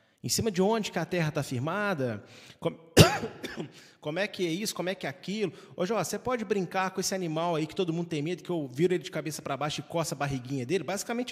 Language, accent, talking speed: Portuguese, Brazilian, 250 wpm